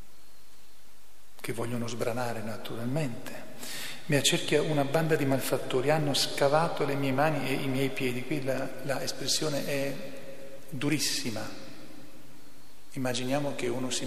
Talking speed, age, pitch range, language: 120 wpm, 40-59, 125-145 Hz, Italian